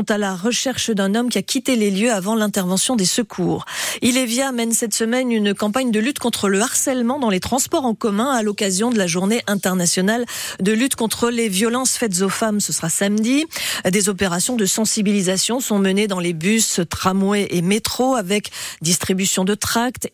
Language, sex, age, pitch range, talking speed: French, female, 40-59, 205-260 Hz, 190 wpm